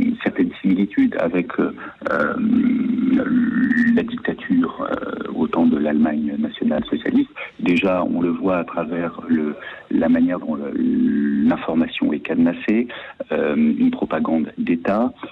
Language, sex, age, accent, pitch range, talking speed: French, male, 50-69, French, 230-270 Hz, 115 wpm